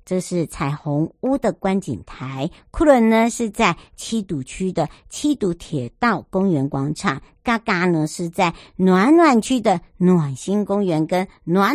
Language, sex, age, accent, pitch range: Chinese, male, 60-79, American, 160-225 Hz